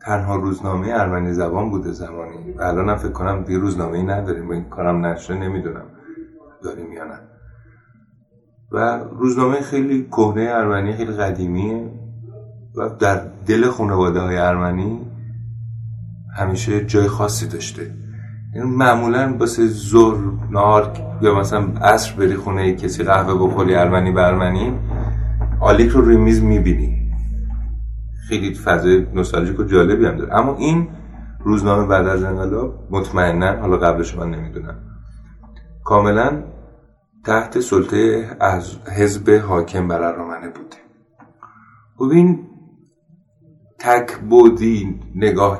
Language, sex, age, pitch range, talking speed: Persian, male, 30-49, 90-115 Hz, 115 wpm